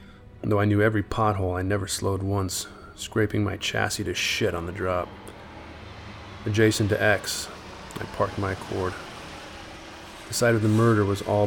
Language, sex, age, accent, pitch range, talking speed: English, male, 20-39, American, 95-105 Hz, 160 wpm